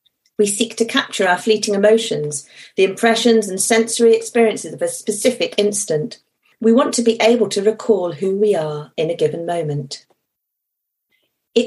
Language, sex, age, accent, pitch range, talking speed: English, female, 40-59, British, 175-225 Hz, 160 wpm